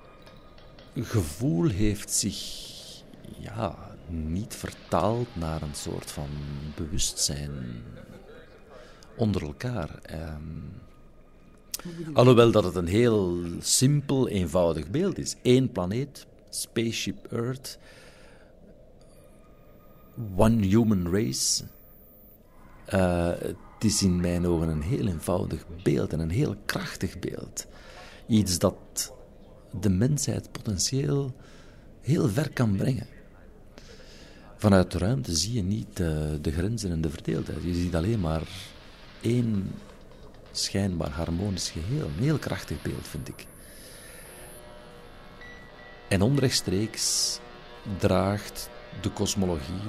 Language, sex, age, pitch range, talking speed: Dutch, male, 60-79, 85-115 Hz, 100 wpm